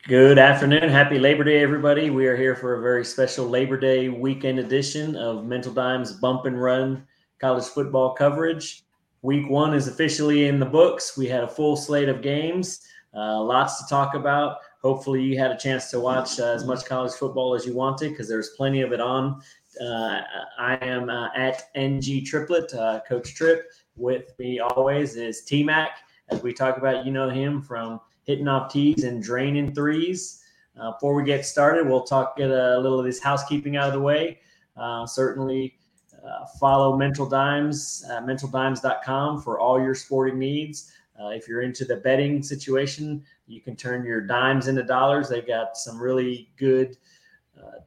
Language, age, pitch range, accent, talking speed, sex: English, 30-49, 125-145 Hz, American, 180 wpm, male